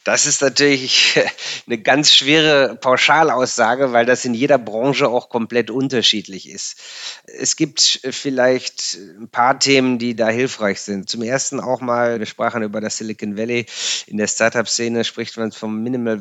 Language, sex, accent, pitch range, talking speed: German, male, German, 115-135 Hz, 160 wpm